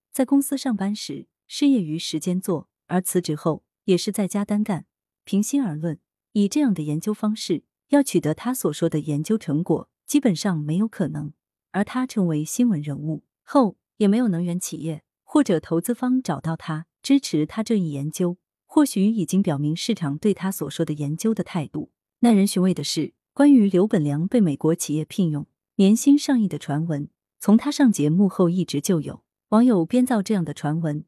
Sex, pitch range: female, 155-215 Hz